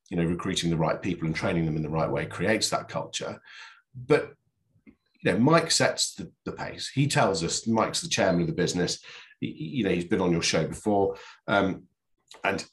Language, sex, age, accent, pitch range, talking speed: English, male, 40-59, British, 95-115 Hz, 210 wpm